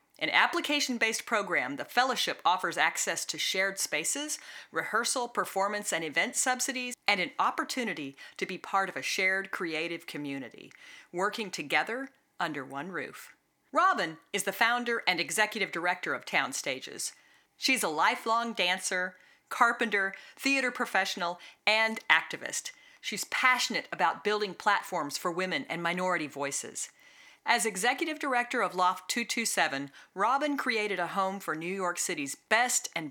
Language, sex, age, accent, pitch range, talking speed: English, female, 40-59, American, 170-240 Hz, 140 wpm